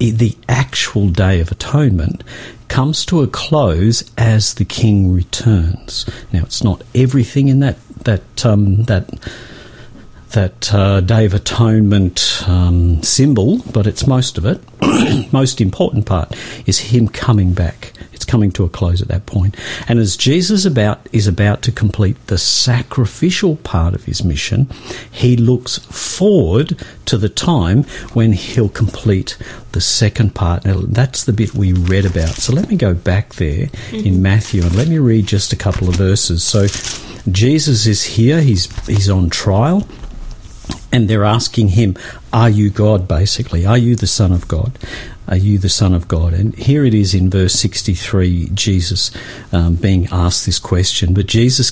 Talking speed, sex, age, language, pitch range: 165 wpm, male, 50-69, English, 95-120 Hz